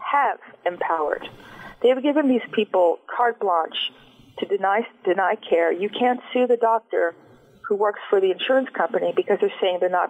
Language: English